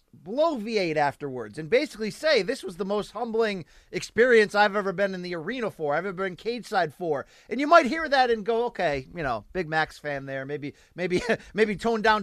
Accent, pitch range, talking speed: American, 175-225 Hz, 215 wpm